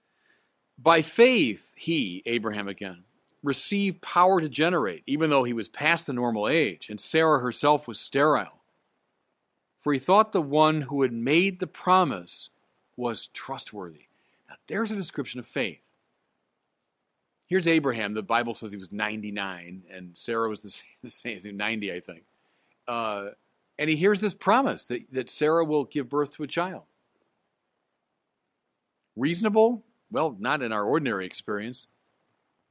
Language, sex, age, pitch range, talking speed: English, male, 40-59, 115-170 Hz, 145 wpm